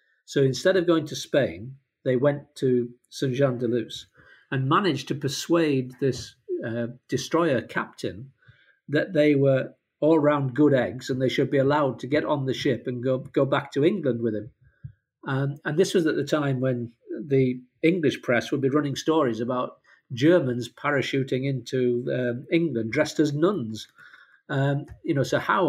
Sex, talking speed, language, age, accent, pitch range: male, 175 wpm, English, 50-69, British, 120-140 Hz